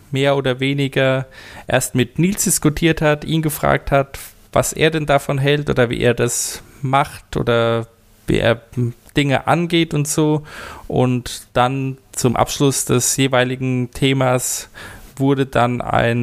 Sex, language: male, German